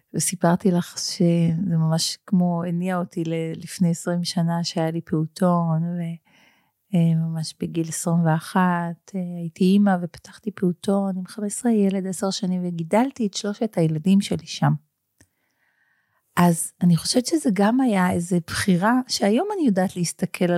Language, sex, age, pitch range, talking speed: Hebrew, female, 40-59, 170-210 Hz, 130 wpm